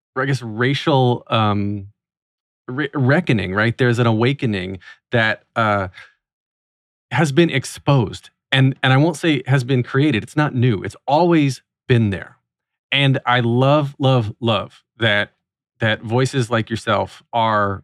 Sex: male